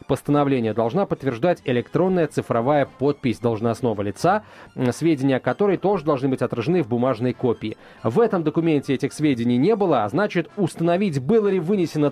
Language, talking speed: Russian, 150 wpm